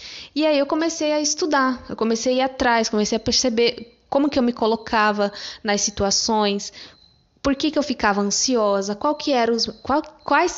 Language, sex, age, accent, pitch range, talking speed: Portuguese, female, 10-29, Brazilian, 210-275 Hz, 185 wpm